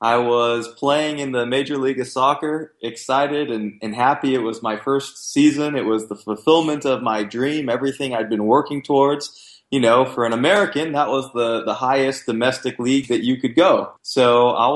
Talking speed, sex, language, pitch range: 195 wpm, male, English, 115-145 Hz